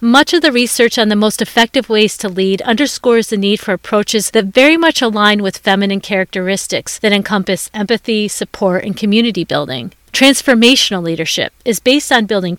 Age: 40-59